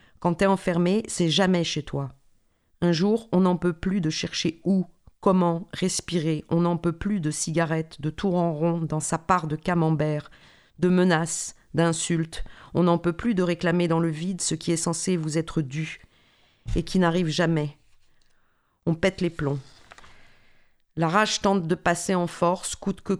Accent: French